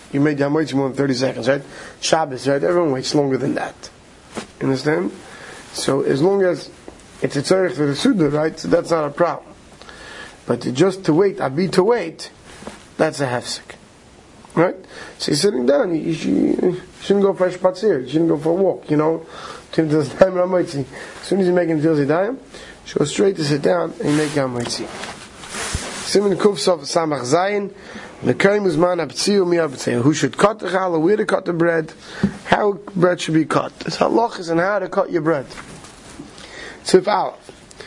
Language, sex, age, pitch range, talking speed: English, male, 30-49, 145-185 Hz, 175 wpm